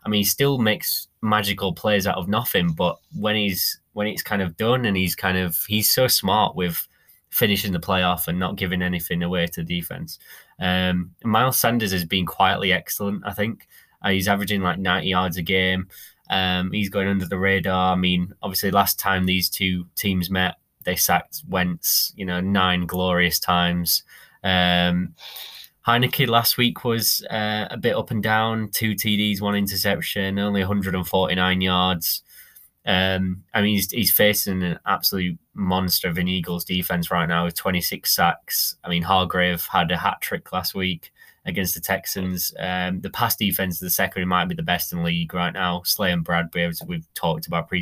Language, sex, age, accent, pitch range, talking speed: English, male, 20-39, British, 90-105 Hz, 185 wpm